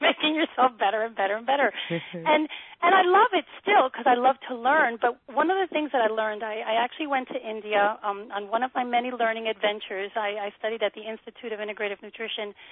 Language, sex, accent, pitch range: English, female, American, 205-260 Hz